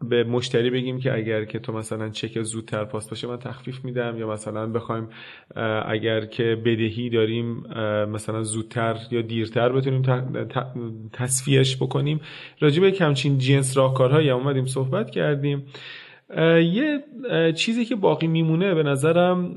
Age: 30-49